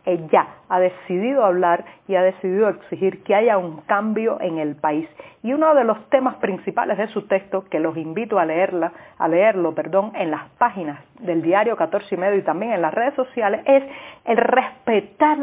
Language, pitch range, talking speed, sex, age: Spanish, 175-235 Hz, 190 wpm, female, 40-59